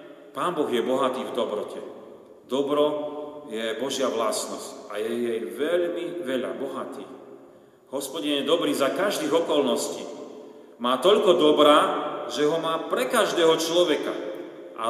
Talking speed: 125 wpm